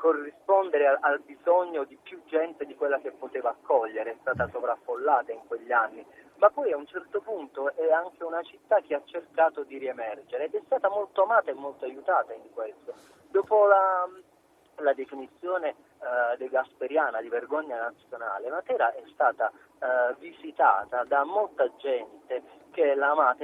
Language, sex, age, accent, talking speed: Italian, male, 30-49, native, 165 wpm